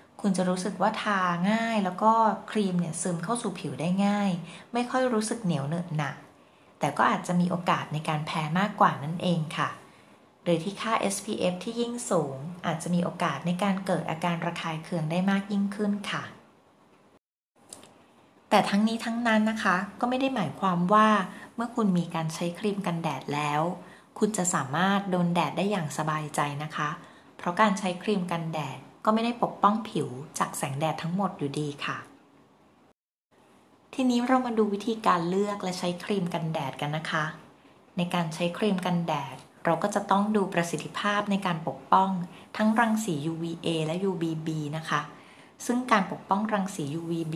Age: 20-39